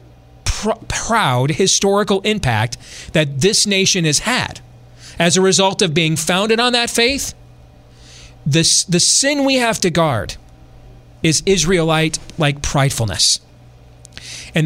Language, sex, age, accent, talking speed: English, male, 40-59, American, 110 wpm